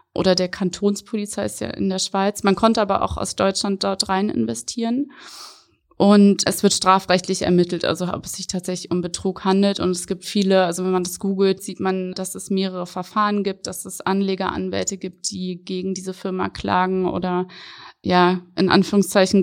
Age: 20-39